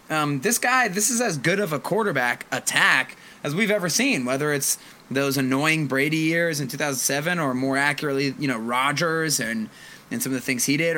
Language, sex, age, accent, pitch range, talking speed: English, male, 20-39, American, 130-160 Hz, 200 wpm